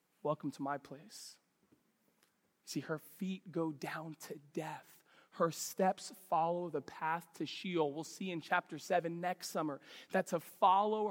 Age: 20-39